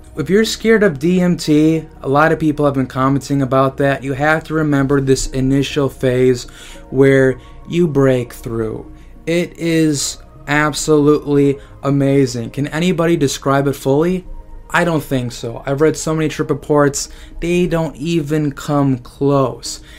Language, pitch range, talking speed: English, 130-160 Hz, 145 wpm